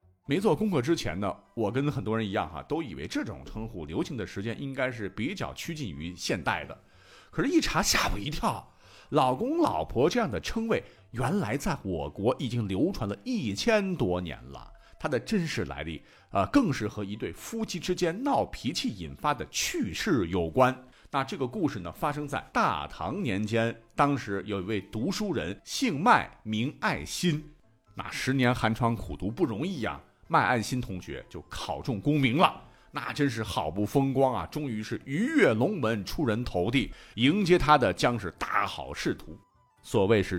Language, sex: Chinese, male